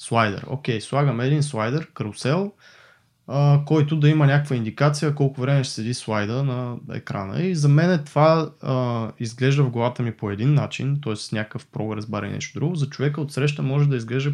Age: 20-39